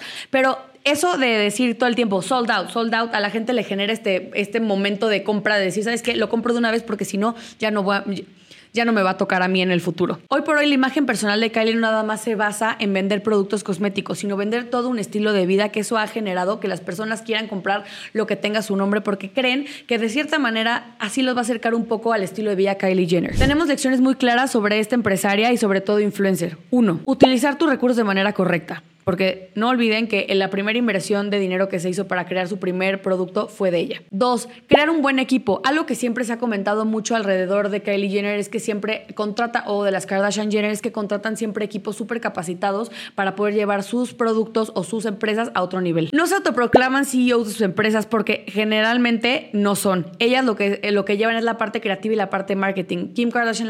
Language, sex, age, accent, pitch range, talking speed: Spanish, female, 20-39, Mexican, 195-235 Hz, 235 wpm